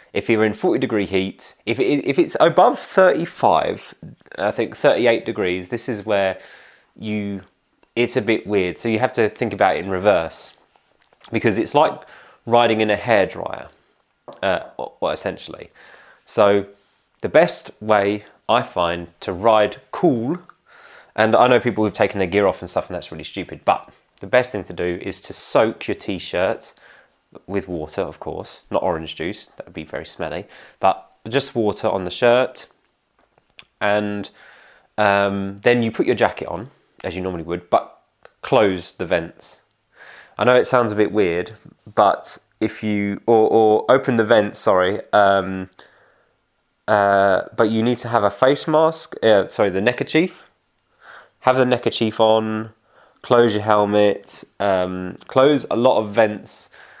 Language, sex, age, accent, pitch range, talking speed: English, male, 20-39, British, 95-120 Hz, 160 wpm